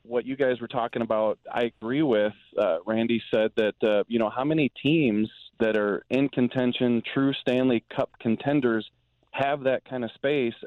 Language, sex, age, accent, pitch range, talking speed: English, male, 30-49, American, 110-135 Hz, 180 wpm